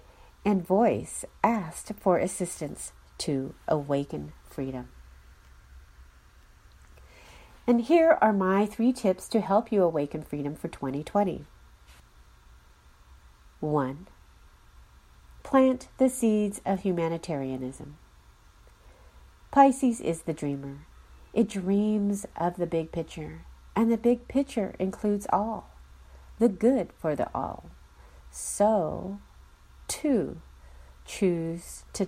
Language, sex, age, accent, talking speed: English, female, 40-59, American, 100 wpm